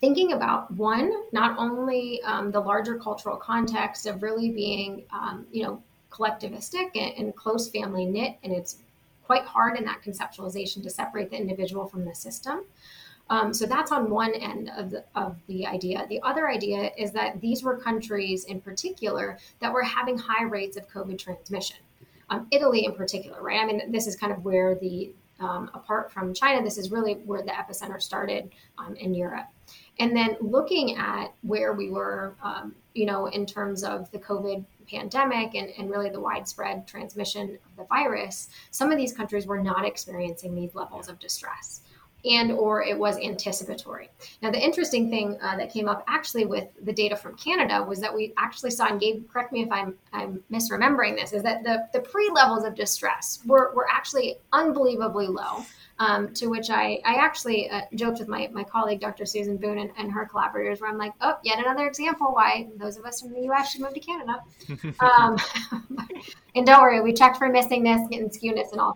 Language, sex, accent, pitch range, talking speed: English, female, American, 200-245 Hz, 190 wpm